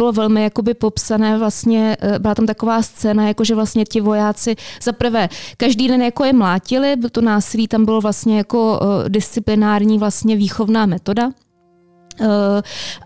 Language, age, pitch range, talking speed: Czech, 20-39, 210-235 Hz, 140 wpm